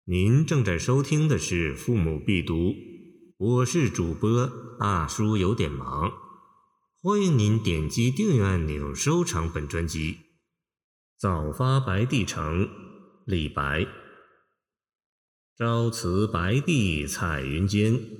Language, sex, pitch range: Chinese, male, 90-135 Hz